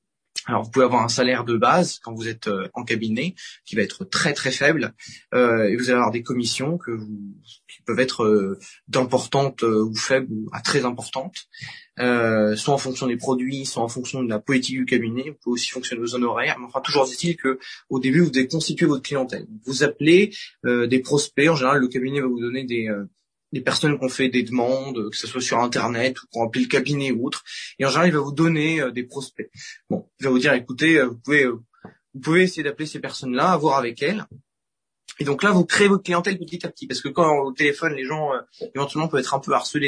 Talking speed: 235 wpm